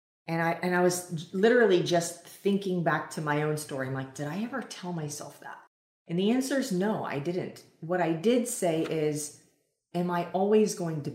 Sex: female